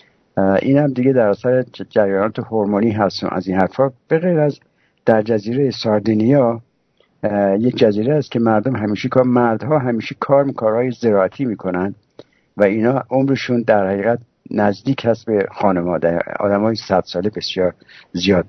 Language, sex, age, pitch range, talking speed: English, male, 60-79, 105-130 Hz, 140 wpm